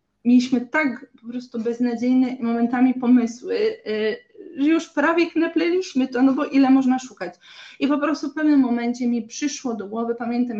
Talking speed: 160 wpm